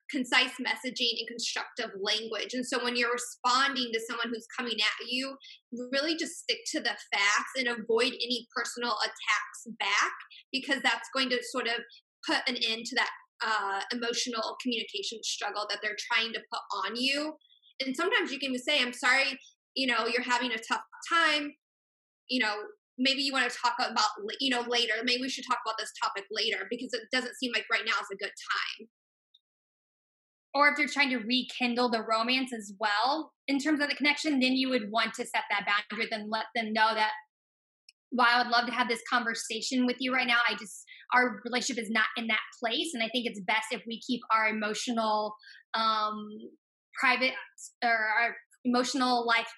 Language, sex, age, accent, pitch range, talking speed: English, female, 10-29, American, 220-260 Hz, 195 wpm